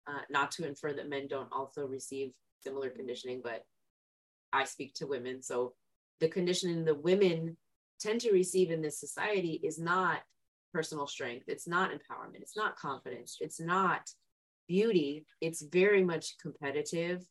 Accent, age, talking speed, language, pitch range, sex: American, 20-39, 155 wpm, English, 140-190 Hz, female